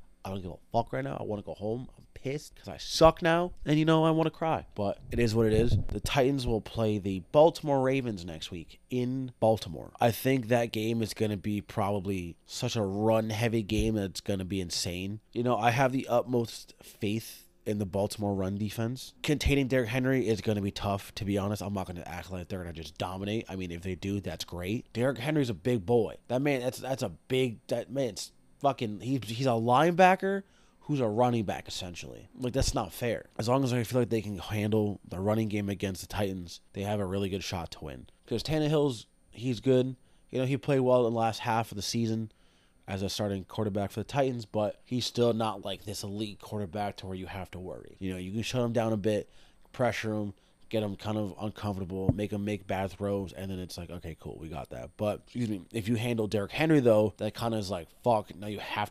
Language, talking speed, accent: English, 235 wpm, American